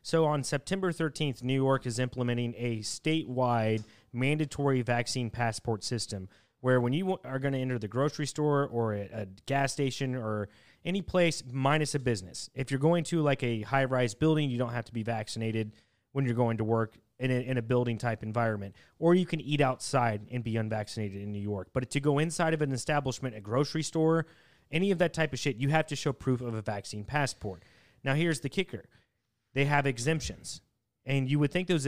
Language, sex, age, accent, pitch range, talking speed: English, male, 30-49, American, 115-145 Hz, 205 wpm